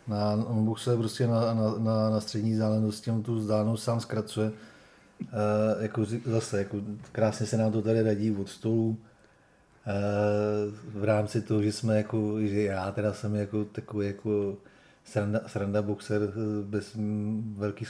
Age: 30-49